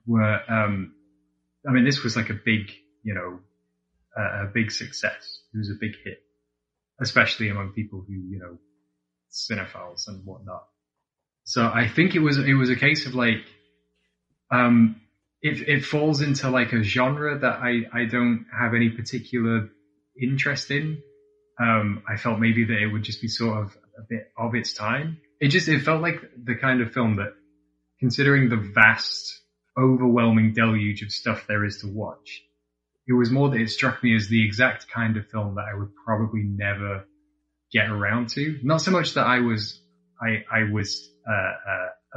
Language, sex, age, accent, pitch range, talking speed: English, male, 20-39, British, 100-120 Hz, 180 wpm